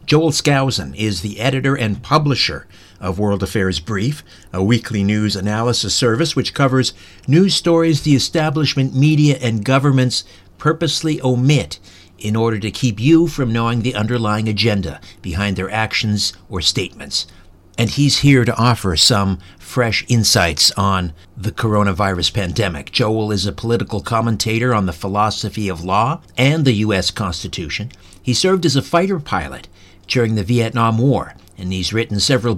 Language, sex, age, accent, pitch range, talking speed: English, male, 60-79, American, 100-130 Hz, 150 wpm